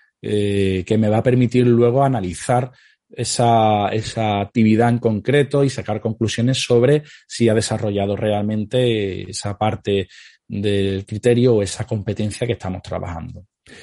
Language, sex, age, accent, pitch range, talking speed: Spanish, male, 30-49, Spanish, 105-120 Hz, 135 wpm